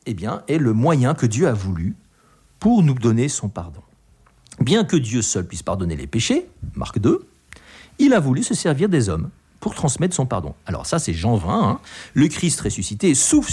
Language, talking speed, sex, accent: French, 200 wpm, male, French